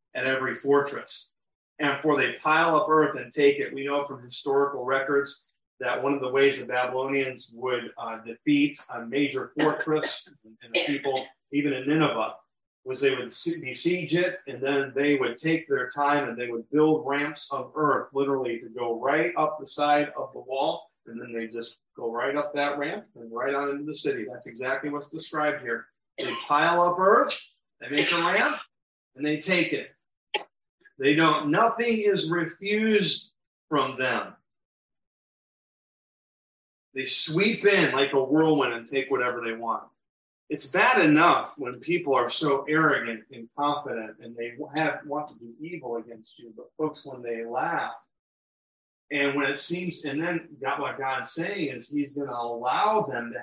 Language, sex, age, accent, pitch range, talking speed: English, male, 40-59, American, 130-155 Hz, 175 wpm